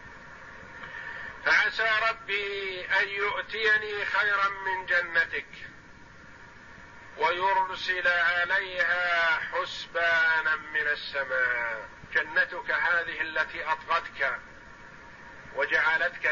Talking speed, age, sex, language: 65 wpm, 50-69, male, Arabic